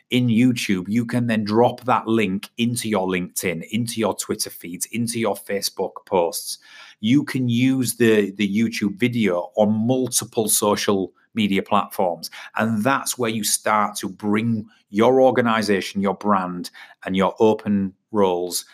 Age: 30-49